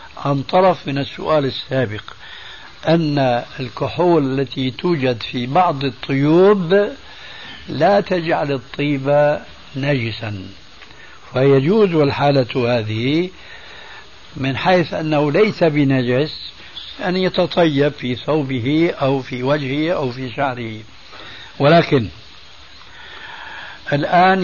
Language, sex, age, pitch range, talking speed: Arabic, male, 70-89, 130-165 Hz, 90 wpm